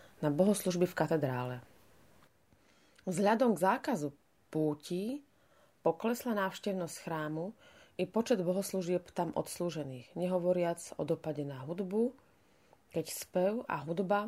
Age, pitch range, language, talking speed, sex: 30-49, 155-190 Hz, Slovak, 105 wpm, female